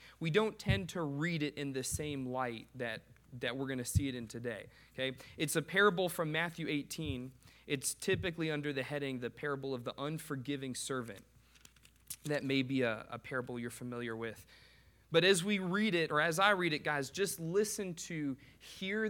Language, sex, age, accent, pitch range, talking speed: English, male, 30-49, American, 130-170 Hz, 190 wpm